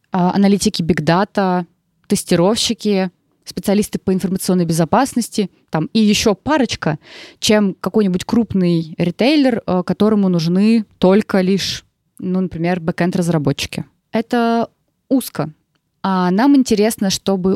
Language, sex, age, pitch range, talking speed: Russian, female, 20-39, 180-215 Hz, 100 wpm